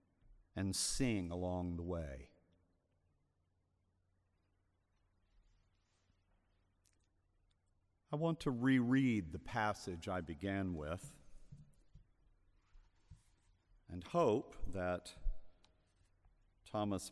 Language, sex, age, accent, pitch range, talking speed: English, male, 50-69, American, 90-110 Hz, 65 wpm